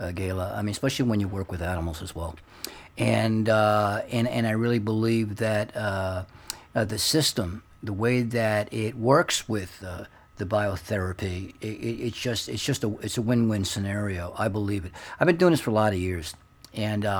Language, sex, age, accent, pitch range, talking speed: English, male, 50-69, American, 100-120 Hz, 200 wpm